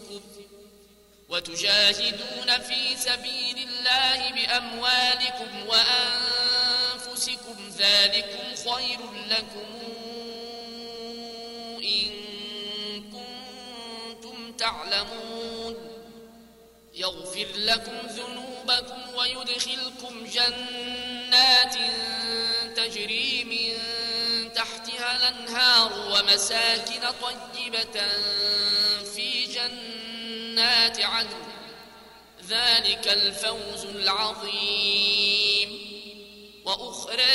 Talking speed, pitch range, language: 45 wpm, 205-240 Hz, Arabic